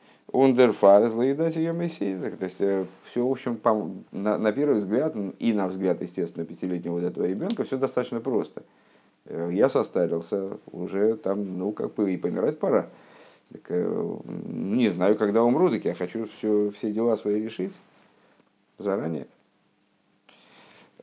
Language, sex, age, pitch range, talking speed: Russian, male, 50-69, 90-110 Hz, 130 wpm